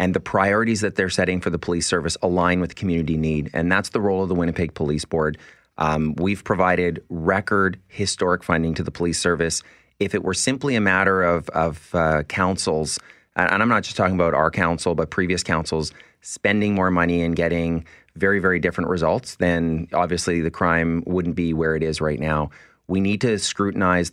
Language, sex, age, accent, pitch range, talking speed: English, male, 30-49, American, 80-90 Hz, 195 wpm